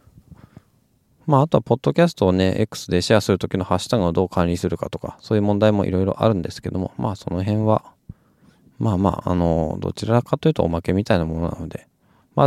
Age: 20-39